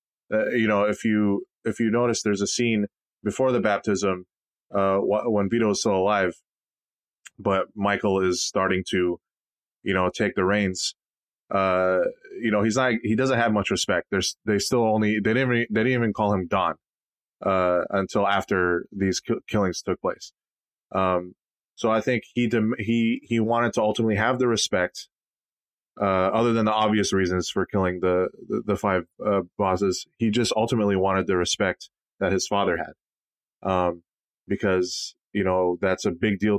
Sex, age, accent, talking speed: male, 20-39, American, 180 wpm